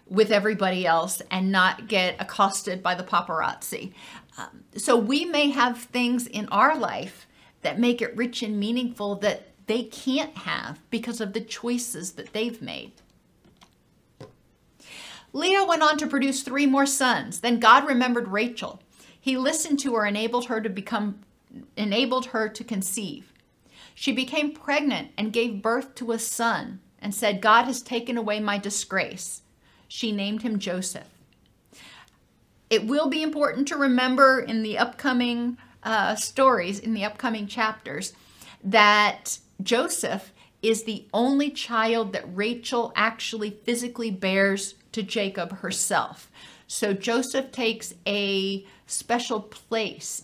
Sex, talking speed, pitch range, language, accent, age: female, 140 wpm, 205-250 Hz, English, American, 50-69